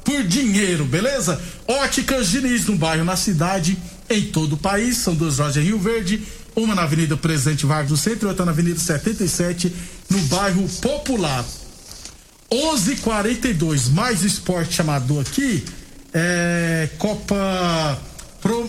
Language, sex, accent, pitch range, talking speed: Portuguese, male, Brazilian, 170-220 Hz, 135 wpm